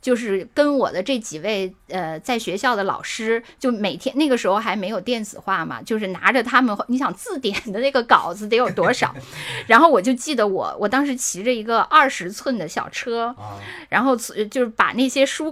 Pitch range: 210-275 Hz